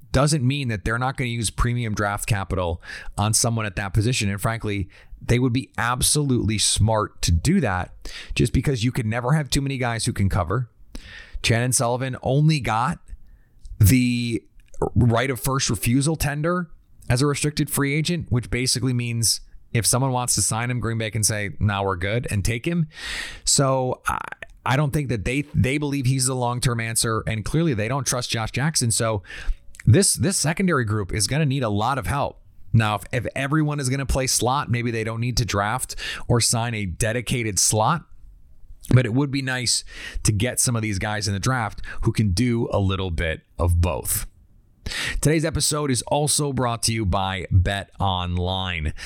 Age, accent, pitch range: 30-49, American, 105-130 Hz